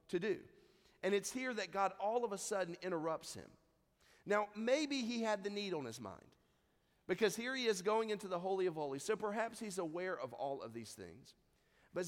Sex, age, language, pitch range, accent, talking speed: male, 40-59, English, 150-210 Hz, American, 210 wpm